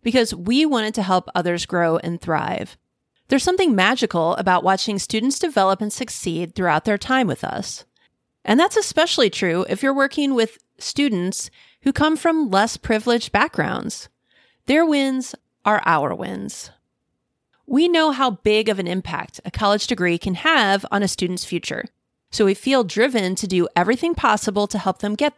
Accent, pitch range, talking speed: American, 180-260 Hz, 170 wpm